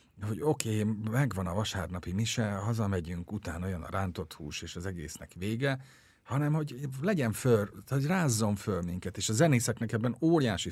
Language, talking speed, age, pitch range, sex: English, 170 wpm, 50-69, 85-120 Hz, male